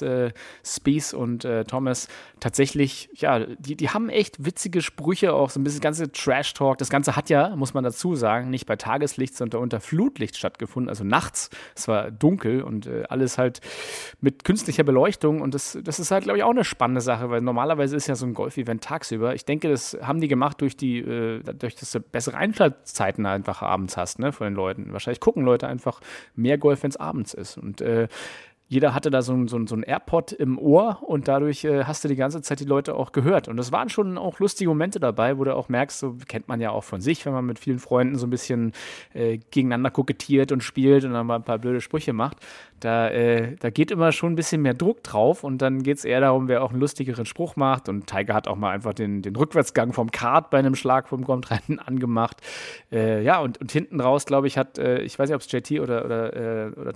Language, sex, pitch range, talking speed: German, male, 120-145 Hz, 225 wpm